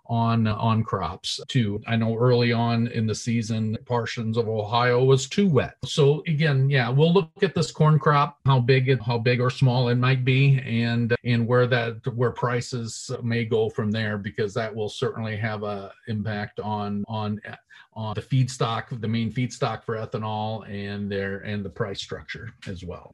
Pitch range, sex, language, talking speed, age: 120-150 Hz, male, English, 185 wpm, 40-59